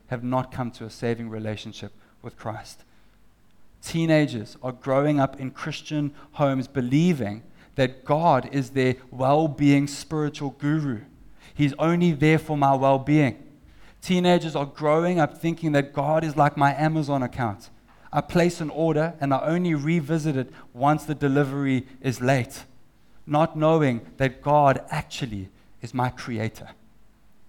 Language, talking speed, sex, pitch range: English, 140 wpm, male, 125-160 Hz